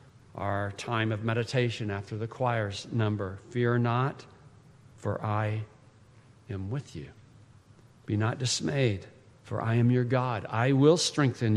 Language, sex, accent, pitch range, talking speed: English, male, American, 115-145 Hz, 135 wpm